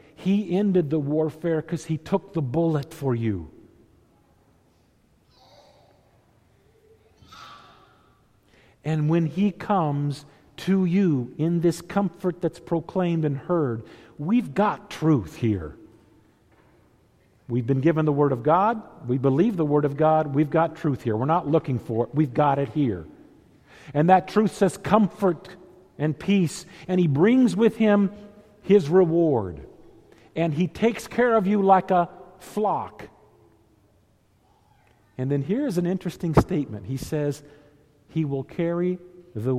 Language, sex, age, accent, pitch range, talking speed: English, male, 50-69, American, 140-205 Hz, 135 wpm